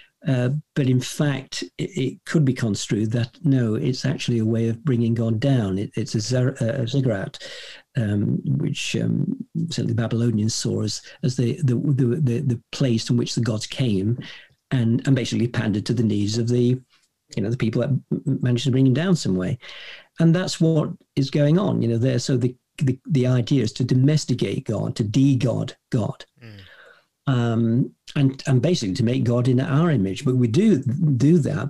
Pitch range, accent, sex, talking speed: 120-145 Hz, British, male, 190 wpm